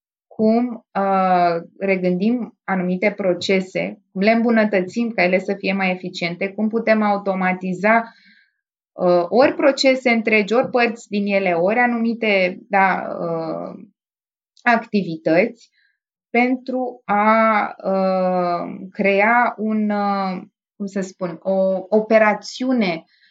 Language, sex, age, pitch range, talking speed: Romanian, female, 20-39, 180-225 Hz, 105 wpm